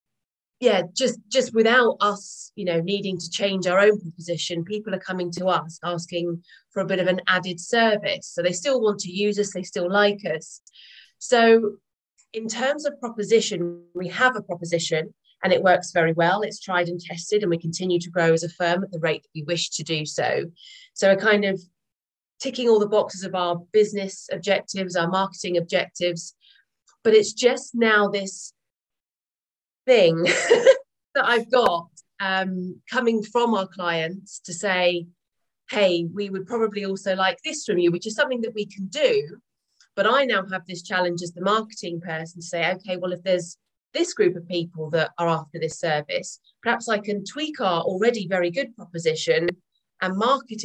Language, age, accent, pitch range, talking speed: English, 30-49, British, 175-215 Hz, 185 wpm